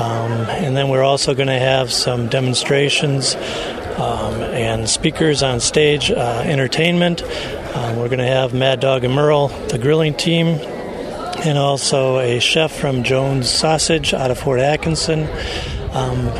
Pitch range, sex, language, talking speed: 130-160 Hz, male, English, 150 wpm